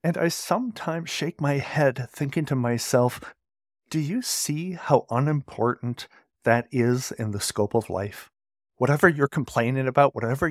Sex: male